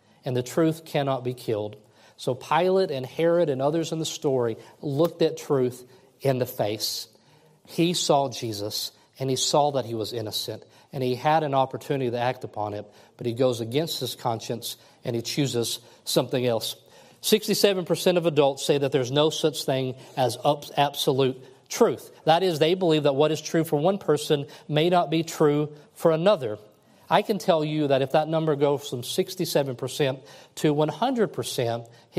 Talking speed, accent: 175 wpm, American